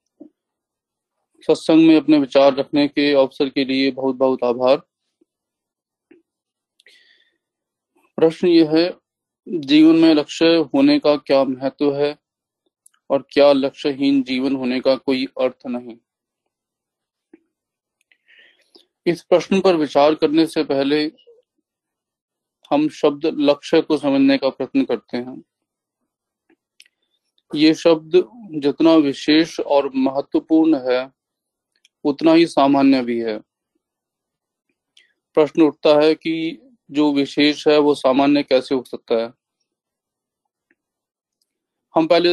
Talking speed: 105 wpm